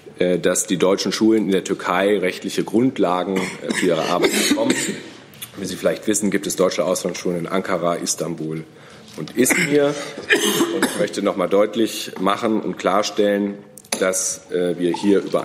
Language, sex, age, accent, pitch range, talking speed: German, male, 40-59, German, 90-110 Hz, 150 wpm